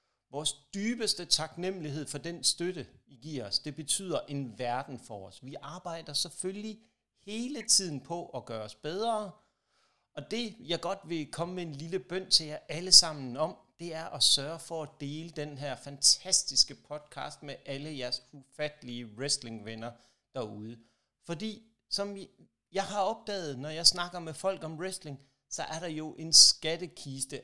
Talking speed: 165 wpm